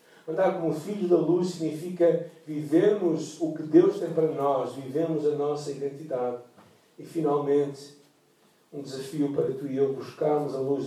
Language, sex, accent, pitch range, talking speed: Portuguese, male, Brazilian, 120-155 Hz, 155 wpm